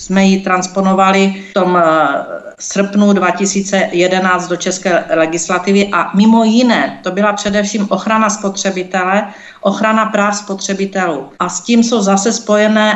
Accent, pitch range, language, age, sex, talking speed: native, 185-210 Hz, Czech, 50-69, female, 125 wpm